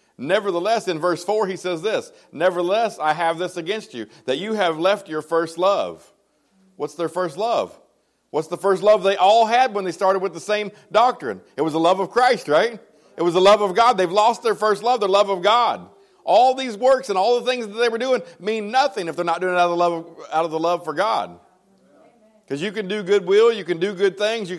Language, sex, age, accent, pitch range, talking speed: English, male, 40-59, American, 175-230 Hz, 245 wpm